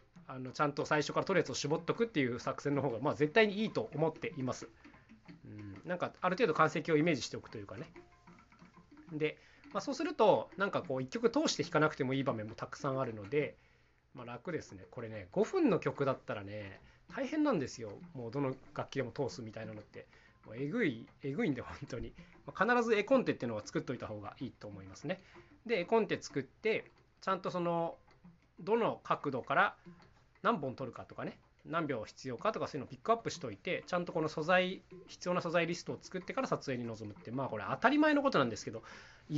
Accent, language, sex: native, Japanese, male